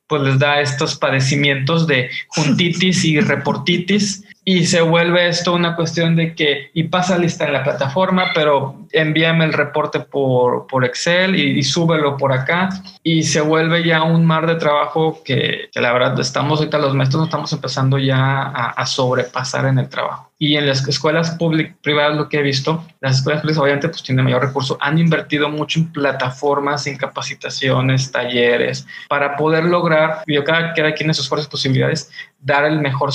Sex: male